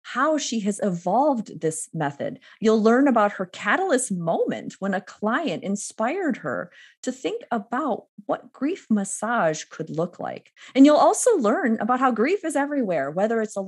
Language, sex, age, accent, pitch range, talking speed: English, female, 30-49, American, 175-240 Hz, 165 wpm